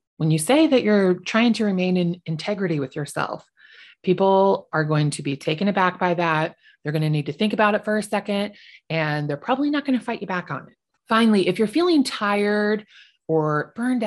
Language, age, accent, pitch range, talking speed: English, 30-49, American, 165-240 Hz, 215 wpm